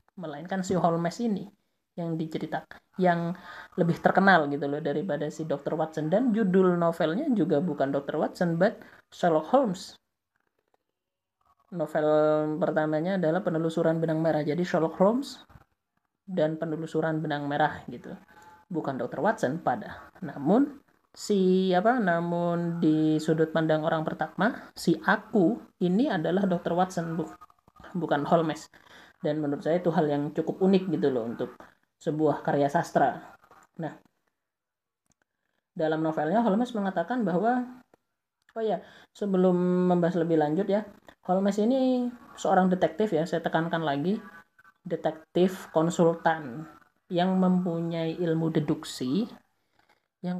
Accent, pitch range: native, 160-195 Hz